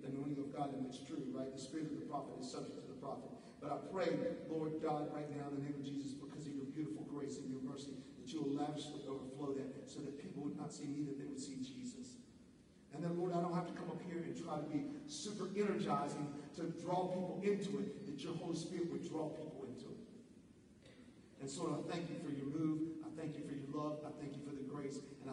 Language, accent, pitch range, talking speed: English, American, 145-180 Hz, 250 wpm